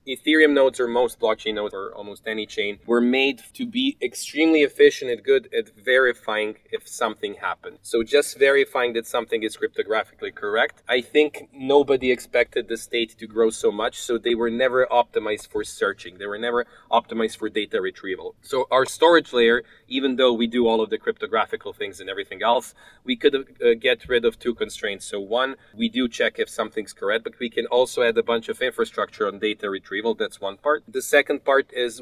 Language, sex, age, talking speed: English, male, 30-49, 195 wpm